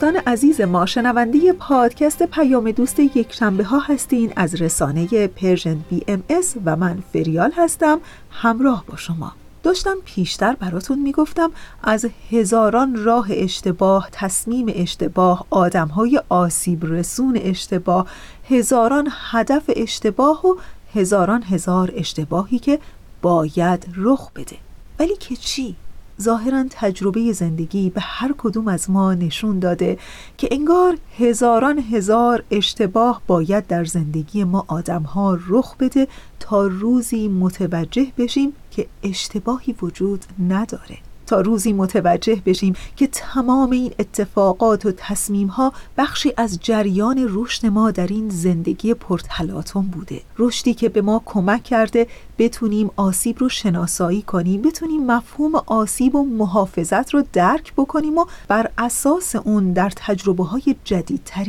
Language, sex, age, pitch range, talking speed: Persian, female, 40-59, 185-255 Hz, 125 wpm